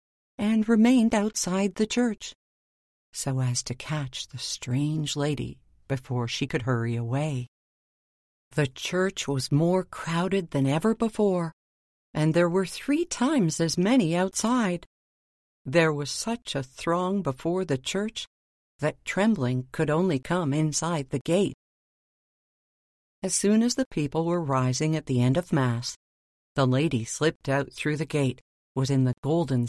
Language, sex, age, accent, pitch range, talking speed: English, female, 50-69, American, 130-185 Hz, 145 wpm